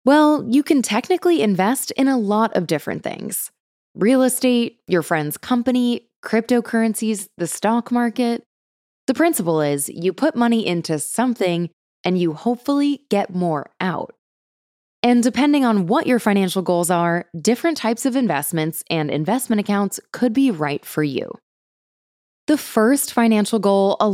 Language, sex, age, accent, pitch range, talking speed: English, female, 10-29, American, 180-255 Hz, 145 wpm